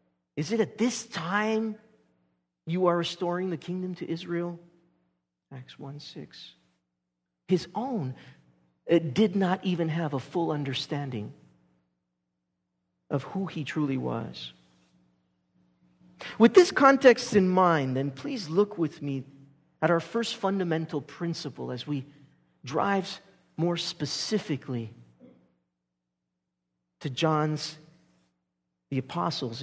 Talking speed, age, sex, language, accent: 105 wpm, 50-69, male, English, American